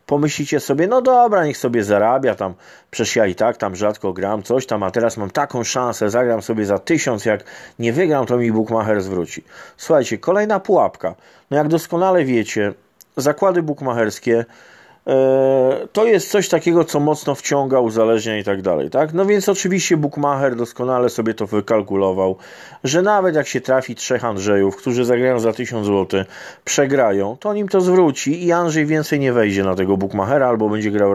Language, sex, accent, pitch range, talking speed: Polish, male, native, 110-170 Hz, 175 wpm